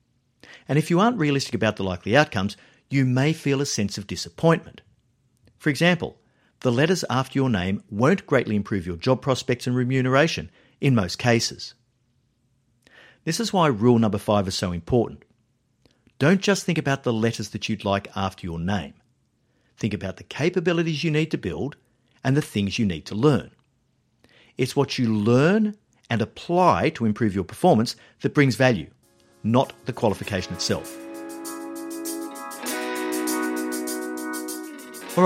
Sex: male